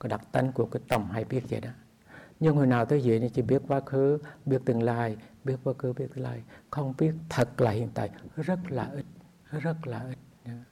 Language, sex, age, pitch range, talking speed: English, male, 60-79, 125-165 Hz, 225 wpm